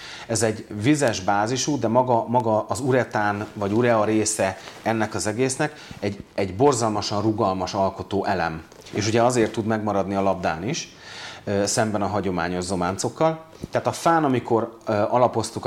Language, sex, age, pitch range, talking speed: Hungarian, male, 30-49, 100-120 Hz, 145 wpm